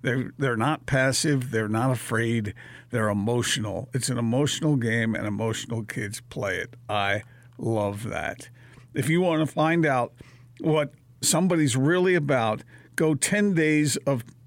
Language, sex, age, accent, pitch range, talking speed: English, male, 50-69, American, 115-145 Hz, 145 wpm